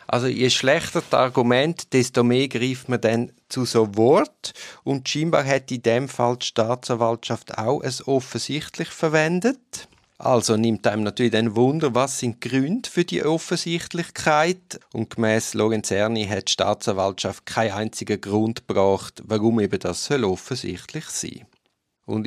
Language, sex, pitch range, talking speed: German, male, 110-150 Hz, 150 wpm